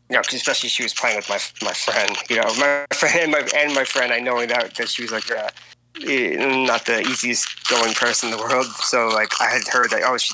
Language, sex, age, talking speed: English, male, 20-39, 255 wpm